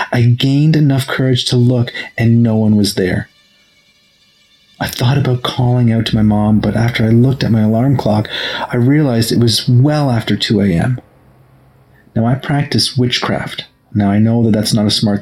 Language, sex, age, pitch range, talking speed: English, male, 30-49, 110-135 Hz, 180 wpm